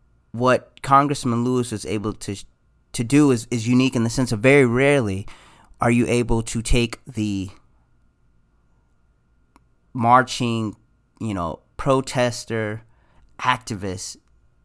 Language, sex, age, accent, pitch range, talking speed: English, male, 30-49, American, 100-125 Hz, 115 wpm